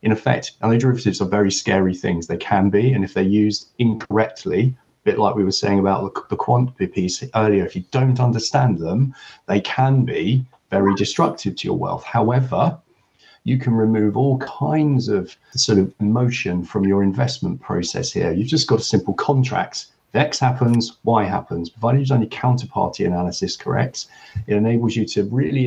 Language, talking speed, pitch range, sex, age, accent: English, 185 wpm, 105-135 Hz, male, 40-59, British